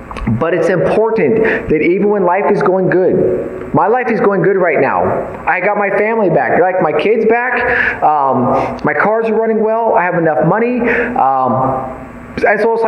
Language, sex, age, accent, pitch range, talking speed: English, male, 30-49, American, 175-225 Hz, 180 wpm